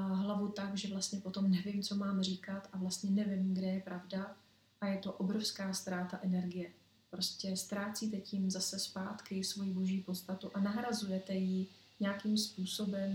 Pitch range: 185-200 Hz